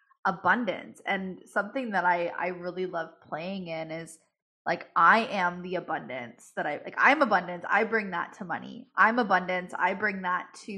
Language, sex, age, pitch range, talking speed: English, female, 10-29, 175-200 Hz, 180 wpm